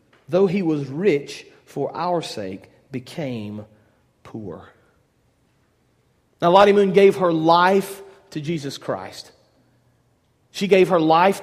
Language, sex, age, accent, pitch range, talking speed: English, male, 40-59, American, 155-215 Hz, 115 wpm